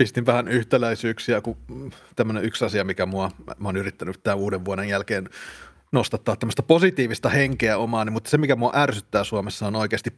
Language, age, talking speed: Finnish, 30-49, 155 wpm